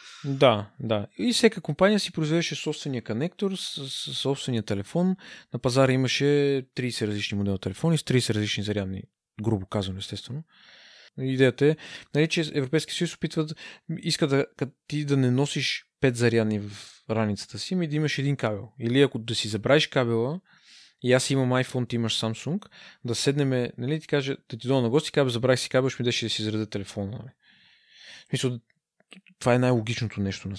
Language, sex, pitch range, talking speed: Bulgarian, male, 110-145 Hz, 175 wpm